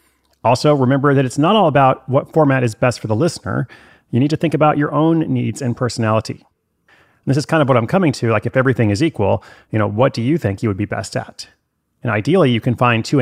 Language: English